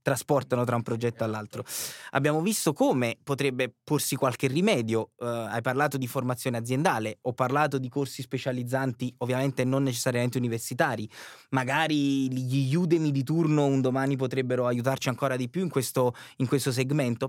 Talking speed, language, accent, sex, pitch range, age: 145 wpm, Italian, native, male, 125-150 Hz, 20-39